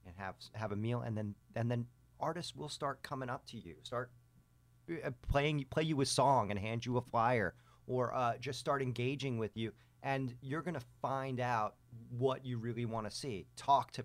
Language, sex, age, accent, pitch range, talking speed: English, male, 40-59, American, 100-125 Hz, 205 wpm